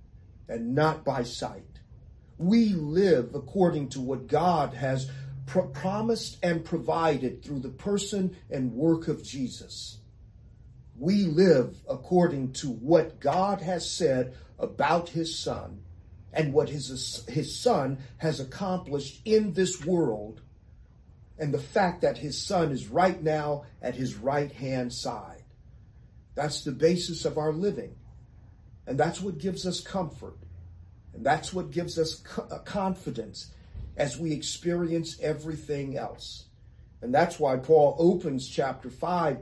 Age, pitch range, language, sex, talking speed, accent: 40-59, 125-180 Hz, English, male, 130 wpm, American